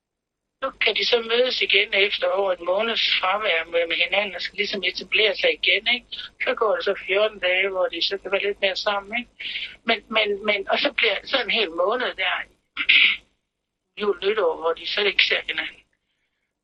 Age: 60-79